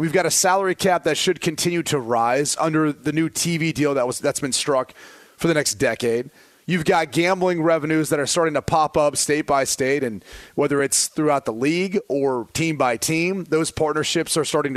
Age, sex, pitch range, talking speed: 30-49, male, 155-195 Hz, 215 wpm